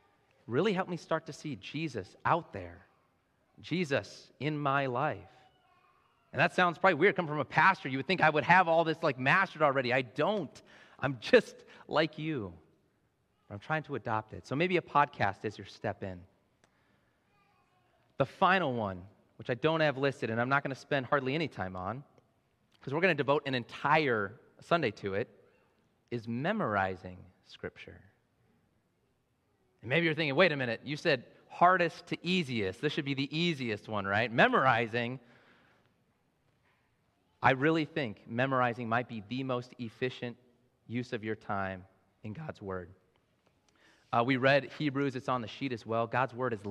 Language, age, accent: English, 30-49, American